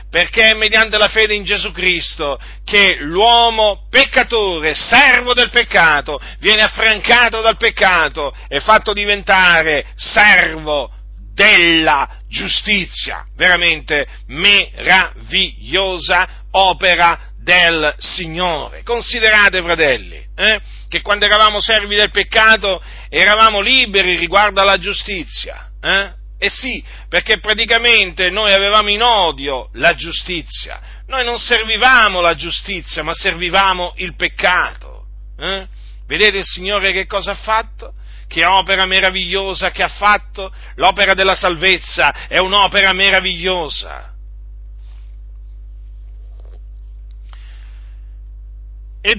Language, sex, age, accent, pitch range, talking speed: Italian, male, 50-69, native, 150-210 Hz, 100 wpm